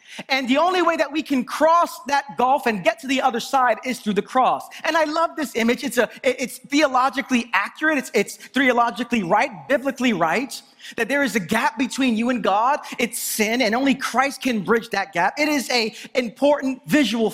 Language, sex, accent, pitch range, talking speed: English, male, American, 230-295 Hz, 205 wpm